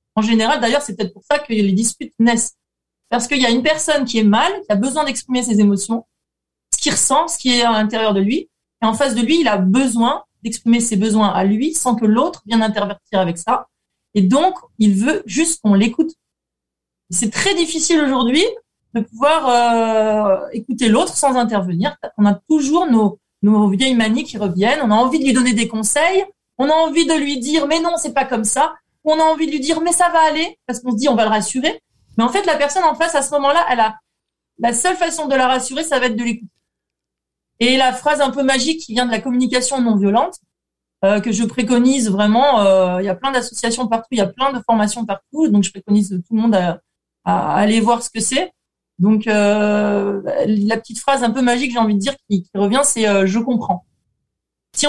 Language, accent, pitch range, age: French, French, 215-290 Hz, 30-49